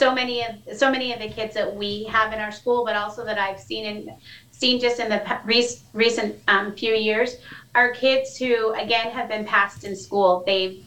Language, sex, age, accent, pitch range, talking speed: English, female, 30-49, American, 180-225 Hz, 215 wpm